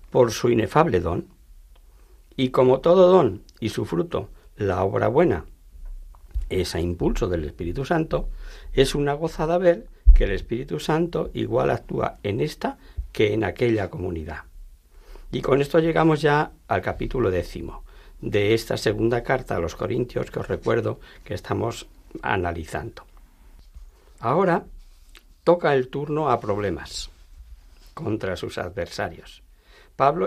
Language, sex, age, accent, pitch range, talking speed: Spanish, male, 60-79, Spanish, 85-140 Hz, 135 wpm